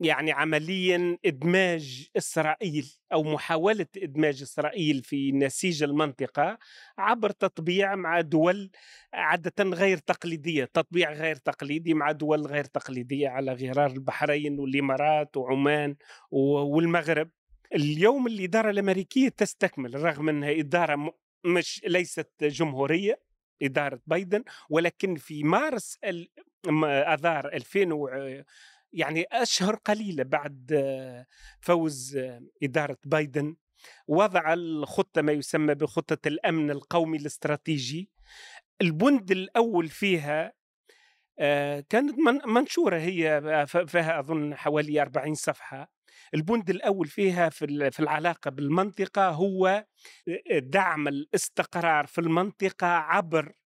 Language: Arabic